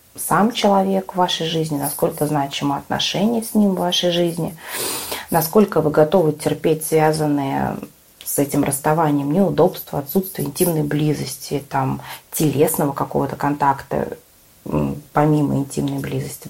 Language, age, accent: Russian, 20-39, native